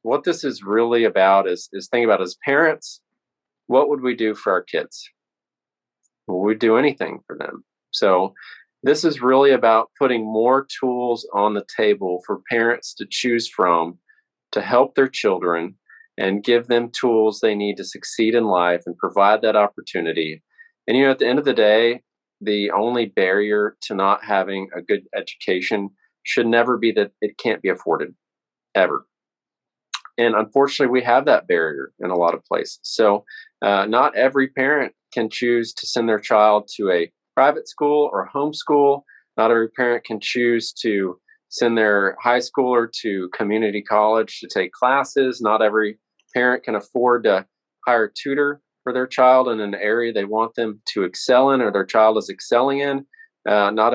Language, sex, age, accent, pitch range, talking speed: English, male, 40-59, American, 105-135 Hz, 175 wpm